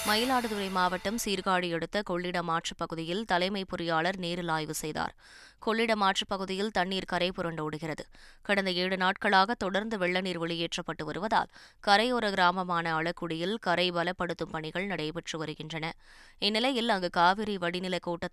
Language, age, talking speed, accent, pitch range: Tamil, 20-39, 120 wpm, native, 170-205 Hz